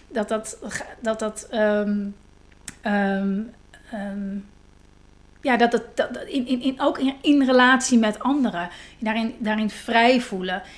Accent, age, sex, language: Dutch, 30-49, female, Dutch